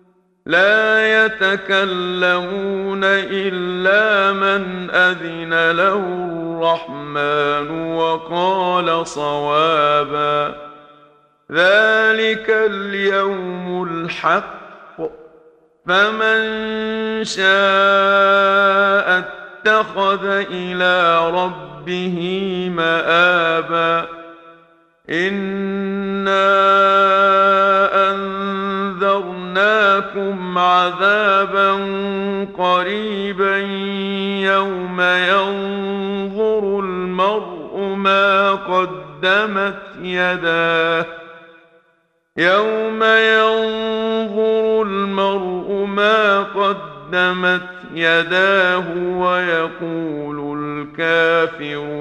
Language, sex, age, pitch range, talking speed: Arabic, male, 50-69, 165-195 Hz, 40 wpm